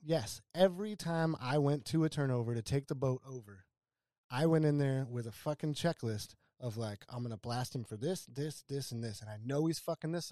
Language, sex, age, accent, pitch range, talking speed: English, male, 20-39, American, 120-155 Hz, 235 wpm